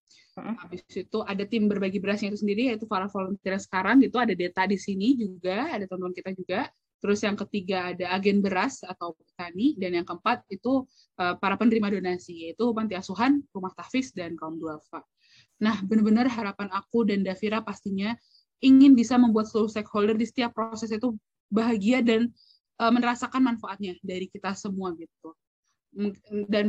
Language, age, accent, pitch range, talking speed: Indonesian, 20-39, native, 190-230 Hz, 165 wpm